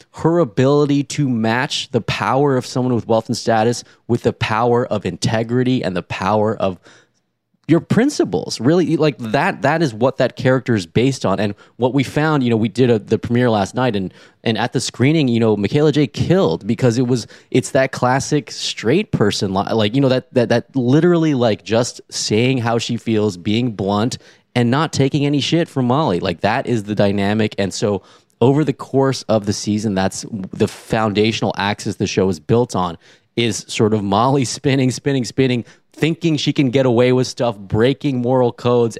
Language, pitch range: English, 100-130 Hz